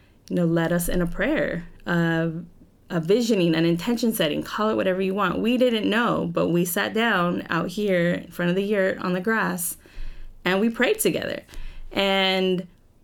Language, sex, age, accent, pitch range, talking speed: English, female, 20-39, American, 165-215 Hz, 180 wpm